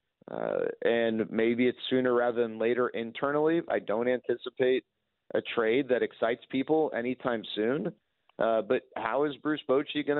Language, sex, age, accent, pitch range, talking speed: English, male, 40-59, American, 120-145 Hz, 155 wpm